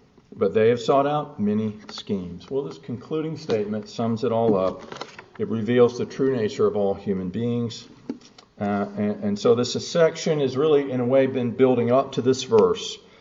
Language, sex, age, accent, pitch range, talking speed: English, male, 50-69, American, 135-200 Hz, 185 wpm